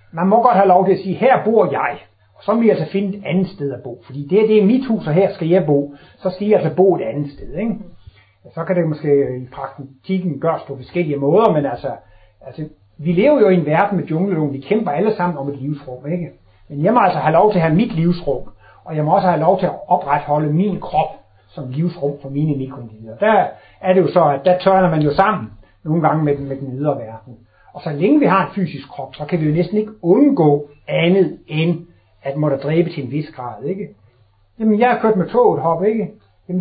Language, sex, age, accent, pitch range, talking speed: Danish, male, 60-79, native, 140-195 Hz, 240 wpm